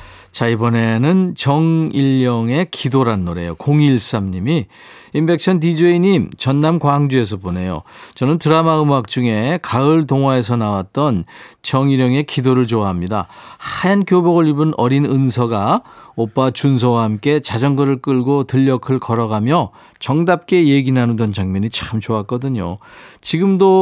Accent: native